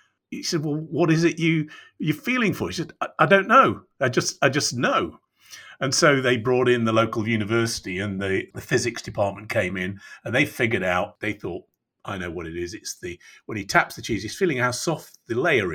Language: English